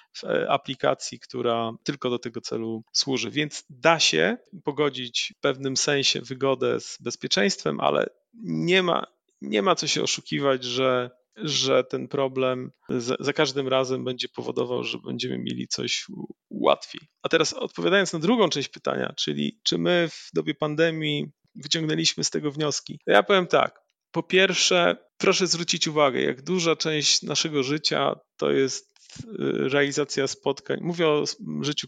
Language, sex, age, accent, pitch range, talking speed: Polish, male, 40-59, native, 130-155 Hz, 140 wpm